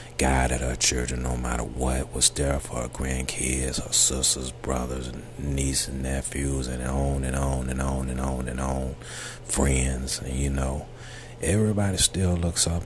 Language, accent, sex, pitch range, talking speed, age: English, American, male, 65-75 Hz, 165 wpm, 40-59